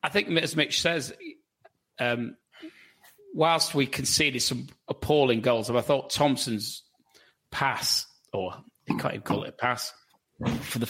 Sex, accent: male, British